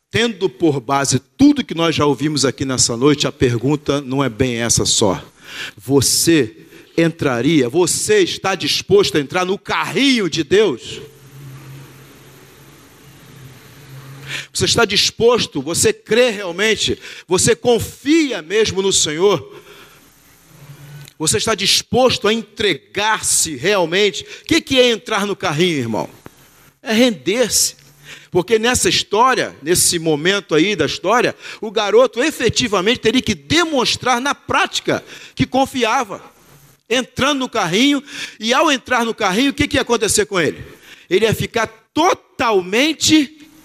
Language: Portuguese